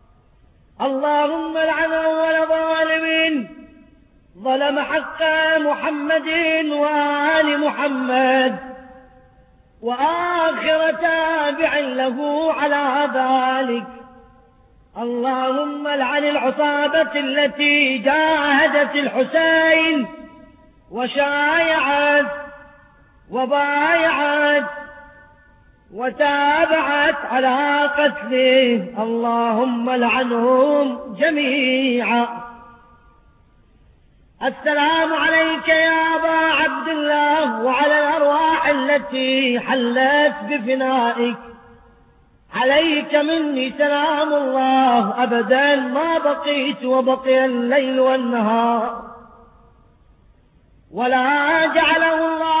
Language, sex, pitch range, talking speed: Persian, female, 260-315 Hz, 55 wpm